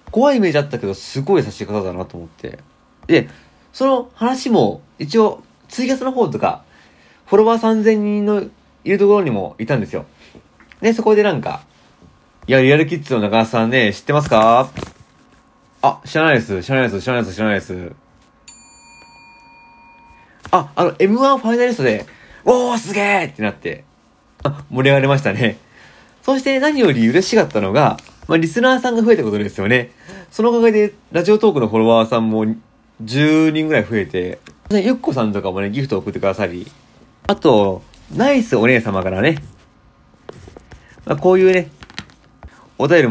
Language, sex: Japanese, male